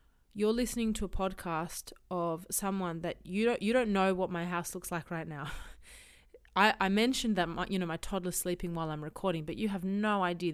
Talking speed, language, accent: 215 wpm, English, Australian